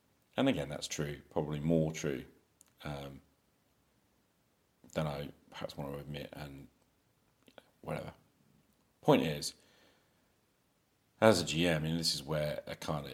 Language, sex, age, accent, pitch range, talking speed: English, male, 40-59, British, 75-80 Hz, 130 wpm